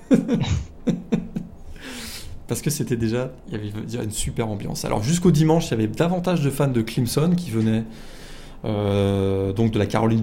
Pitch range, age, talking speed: 110-150 Hz, 20-39, 180 wpm